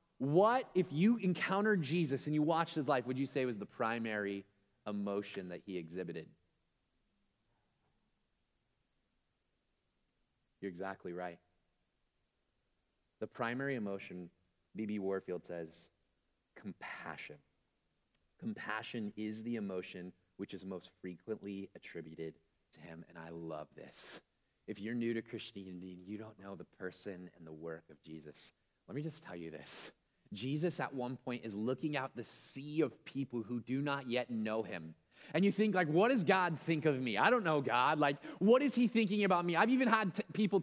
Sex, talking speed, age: male, 160 wpm, 30-49